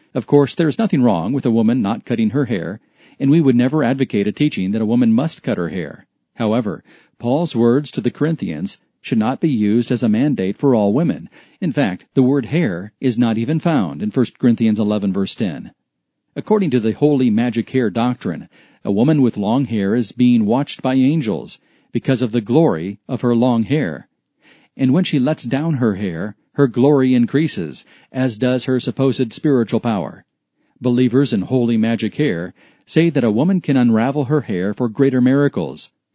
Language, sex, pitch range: English, male, 120-145 Hz